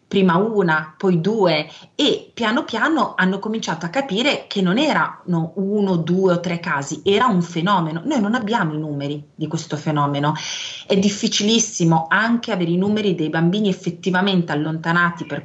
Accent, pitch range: native, 160-195 Hz